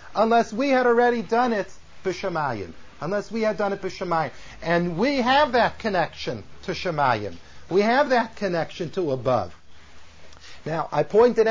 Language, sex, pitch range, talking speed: English, male, 185-230 Hz, 150 wpm